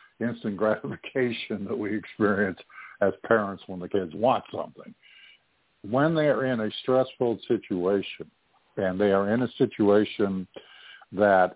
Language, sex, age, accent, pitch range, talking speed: English, male, 60-79, American, 95-115 Hz, 135 wpm